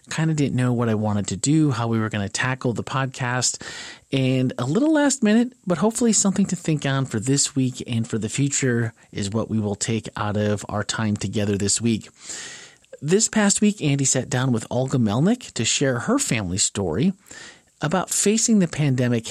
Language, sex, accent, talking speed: English, male, American, 200 wpm